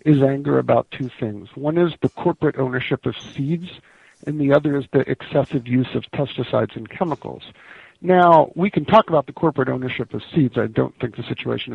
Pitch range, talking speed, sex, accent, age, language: 125-175 Hz, 195 wpm, male, American, 50-69, English